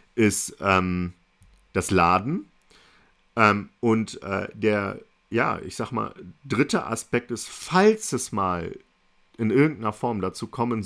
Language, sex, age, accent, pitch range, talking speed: German, male, 40-59, German, 95-115 Hz, 125 wpm